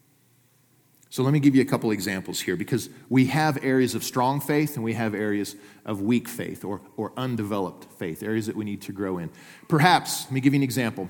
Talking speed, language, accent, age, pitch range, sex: 220 wpm, English, American, 40-59, 115-150 Hz, male